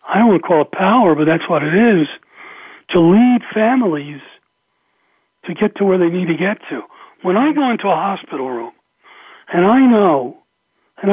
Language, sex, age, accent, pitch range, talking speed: English, male, 60-79, American, 165-215 Hz, 190 wpm